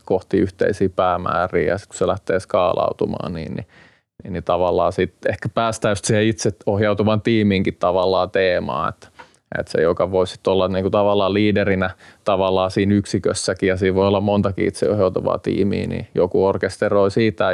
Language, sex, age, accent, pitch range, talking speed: Finnish, male, 20-39, native, 95-110 Hz, 155 wpm